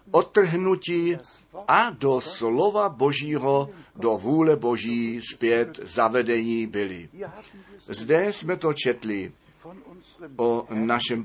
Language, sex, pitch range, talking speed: Czech, male, 115-155 Hz, 90 wpm